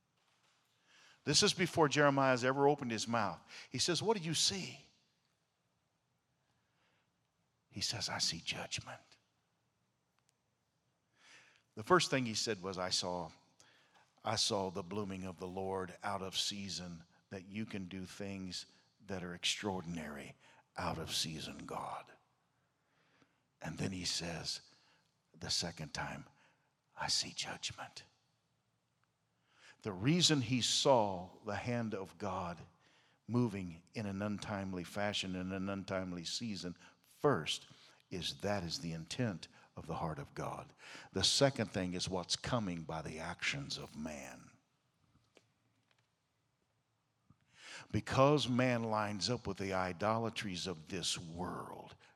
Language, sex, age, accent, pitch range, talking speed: English, male, 50-69, American, 95-130 Hz, 125 wpm